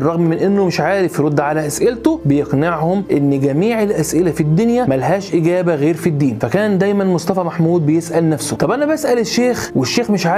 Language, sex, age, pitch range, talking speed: Arabic, male, 20-39, 160-205 Hz, 180 wpm